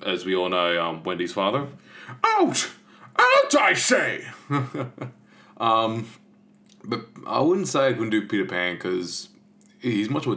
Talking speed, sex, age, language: 145 wpm, male, 20-39, English